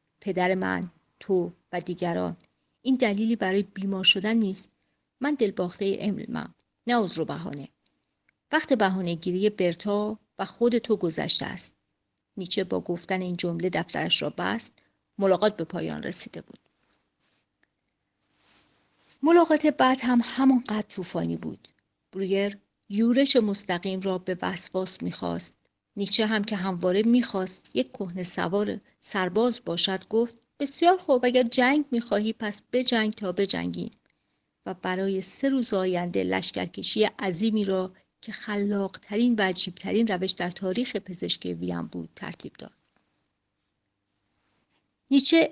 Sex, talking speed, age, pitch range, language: female, 125 wpm, 50-69, 180-230 Hz, Persian